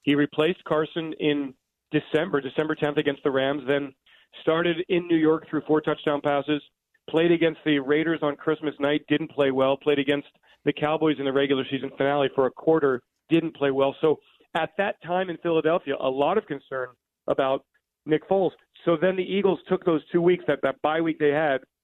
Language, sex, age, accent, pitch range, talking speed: English, male, 40-59, American, 140-160 Hz, 195 wpm